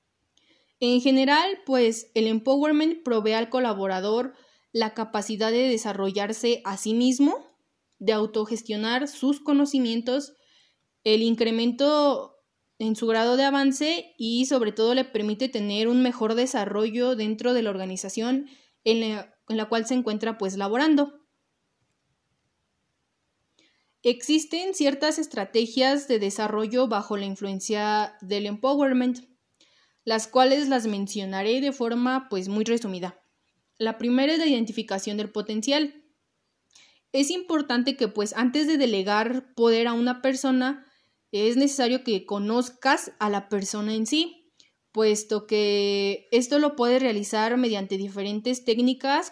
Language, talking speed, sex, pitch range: Spanish, 125 wpm, female, 215-265 Hz